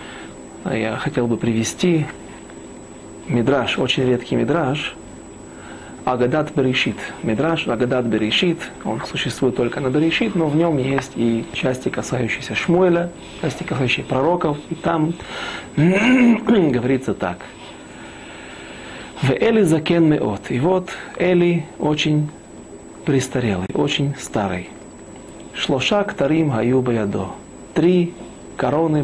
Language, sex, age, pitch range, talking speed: Russian, male, 40-59, 120-170 Hz, 100 wpm